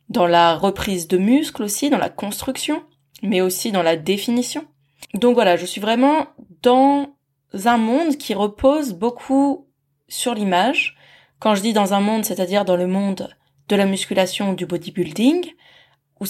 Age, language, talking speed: 20-39, French, 160 wpm